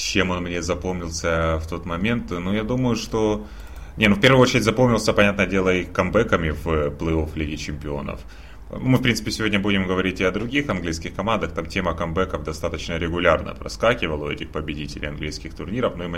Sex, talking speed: male, 185 wpm